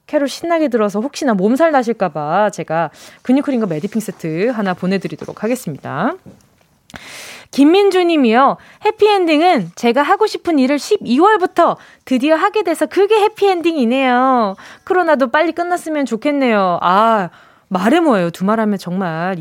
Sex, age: female, 20-39